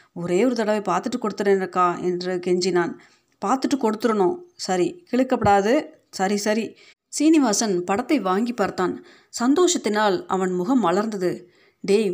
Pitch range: 185-240 Hz